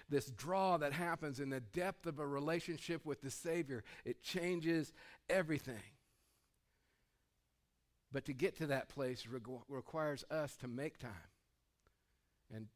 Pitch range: 120-150 Hz